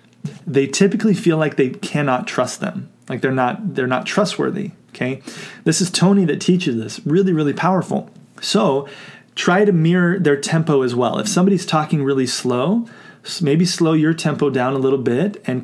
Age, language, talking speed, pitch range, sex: 30-49, English, 175 wpm, 135-180 Hz, male